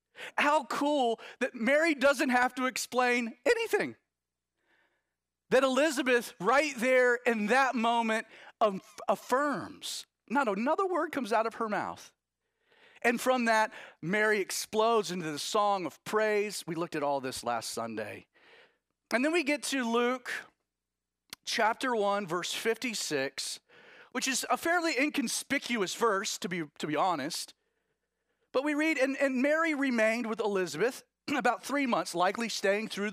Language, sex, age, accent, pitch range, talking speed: English, male, 40-59, American, 180-260 Hz, 145 wpm